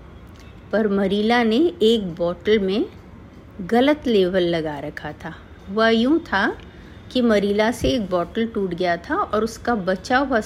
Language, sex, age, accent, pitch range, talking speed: Hindi, female, 50-69, native, 185-250 Hz, 150 wpm